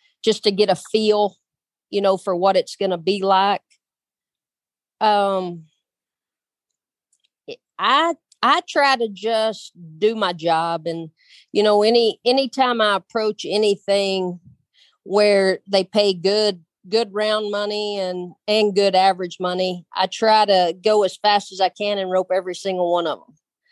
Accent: American